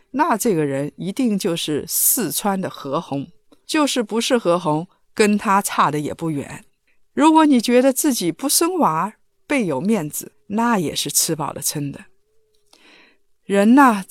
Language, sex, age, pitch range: Chinese, female, 50-69, 170-270 Hz